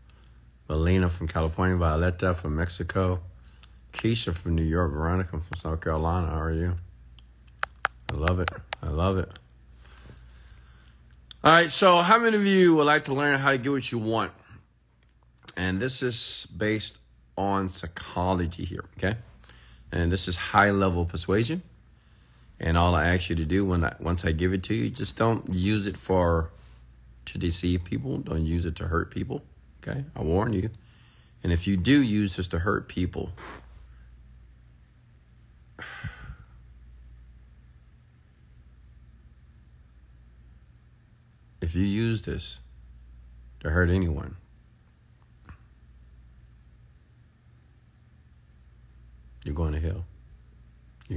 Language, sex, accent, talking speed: English, male, American, 125 wpm